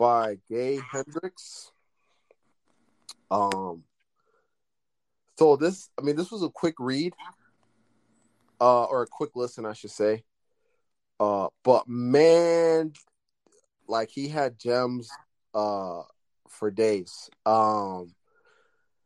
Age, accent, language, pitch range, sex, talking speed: 20-39, American, English, 105-140 Hz, male, 100 wpm